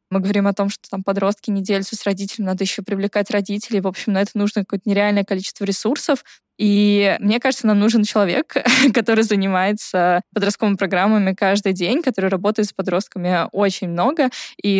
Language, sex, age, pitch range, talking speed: Russian, female, 10-29, 200-240 Hz, 170 wpm